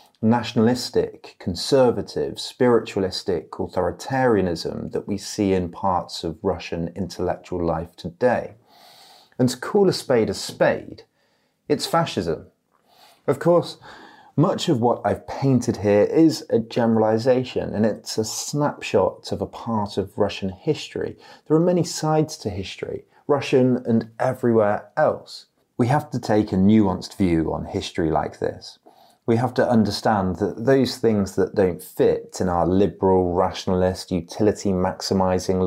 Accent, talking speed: British, 135 wpm